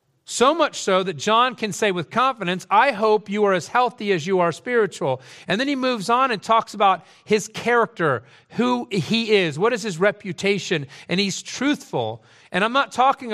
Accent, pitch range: American, 170-220 Hz